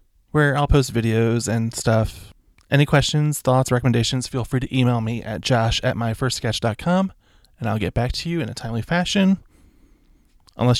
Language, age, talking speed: English, 20-39, 160 wpm